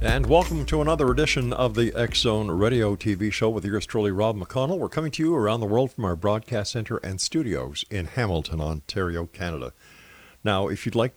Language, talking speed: English, 200 wpm